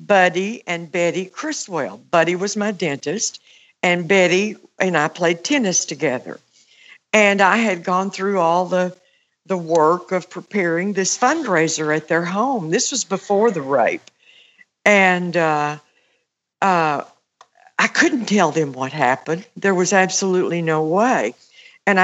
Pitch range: 165-205 Hz